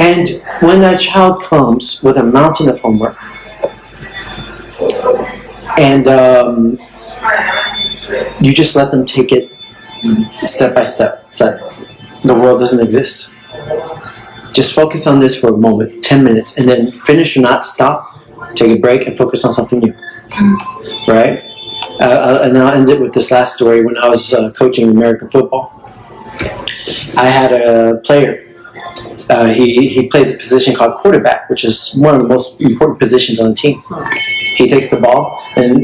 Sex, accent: male, American